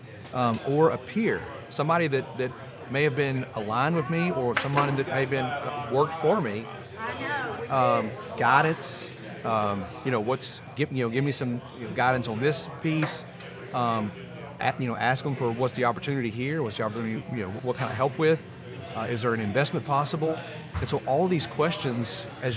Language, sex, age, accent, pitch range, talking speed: English, male, 30-49, American, 120-145 Hz, 200 wpm